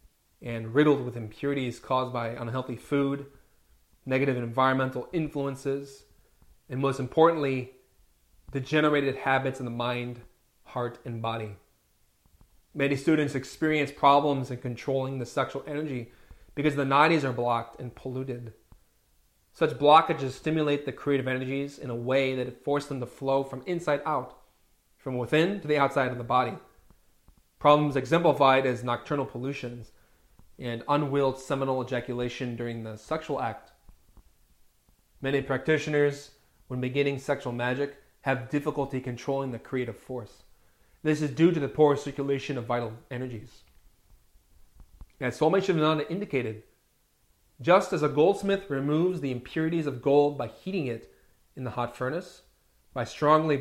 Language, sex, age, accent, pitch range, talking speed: English, male, 30-49, American, 120-145 Hz, 135 wpm